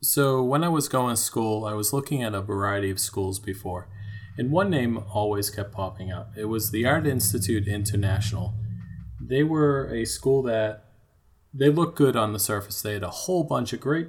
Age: 30-49